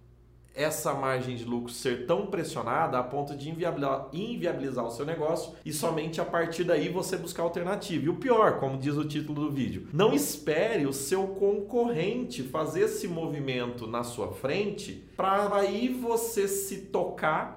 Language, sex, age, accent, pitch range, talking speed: Portuguese, male, 30-49, Brazilian, 120-175 Hz, 160 wpm